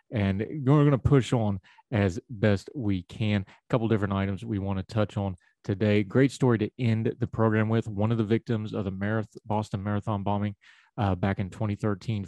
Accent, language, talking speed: American, English, 195 wpm